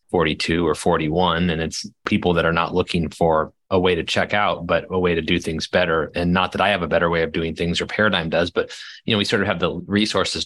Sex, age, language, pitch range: male, 30-49, English, 85-95 Hz